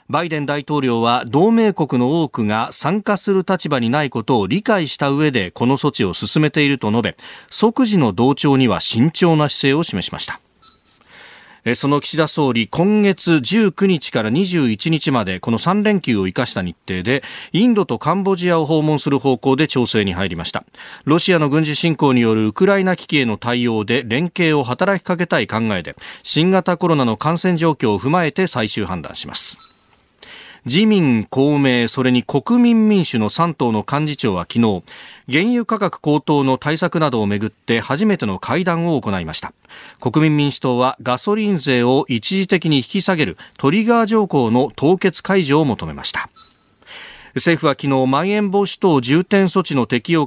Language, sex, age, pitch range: Japanese, male, 40-59, 120-185 Hz